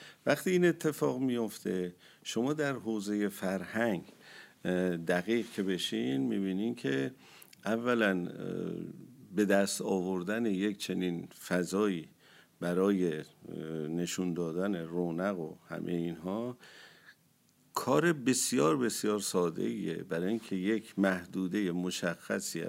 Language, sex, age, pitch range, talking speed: Persian, male, 50-69, 90-115 Hz, 95 wpm